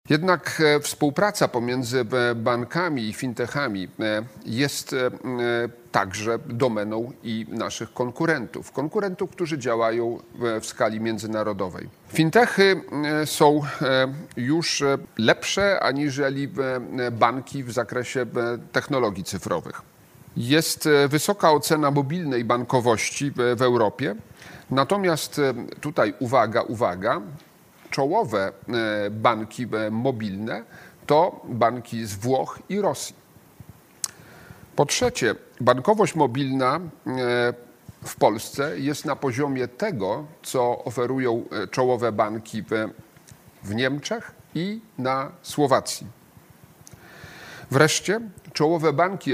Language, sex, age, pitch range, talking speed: Polish, male, 40-59, 120-155 Hz, 85 wpm